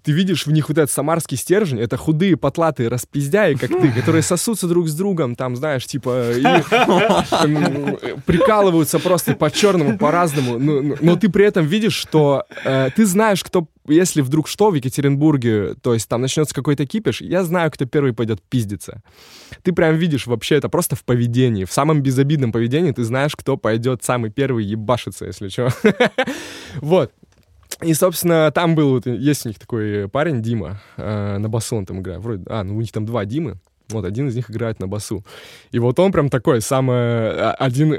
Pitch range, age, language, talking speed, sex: 110-160 Hz, 20-39, Russian, 185 wpm, male